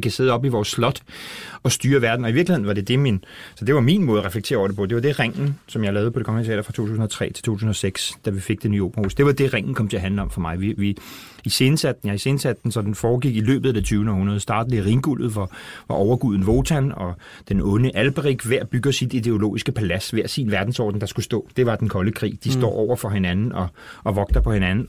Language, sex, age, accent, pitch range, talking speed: Danish, male, 30-49, native, 105-130 Hz, 265 wpm